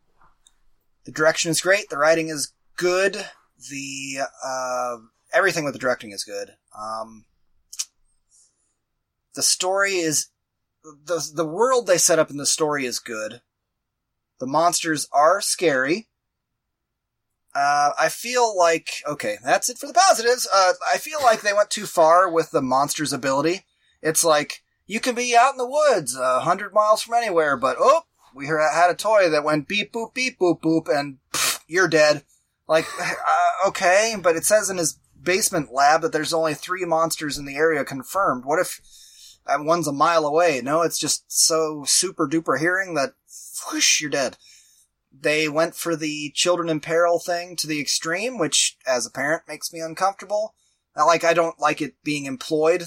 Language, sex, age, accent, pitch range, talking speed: English, male, 20-39, American, 145-195 Hz, 170 wpm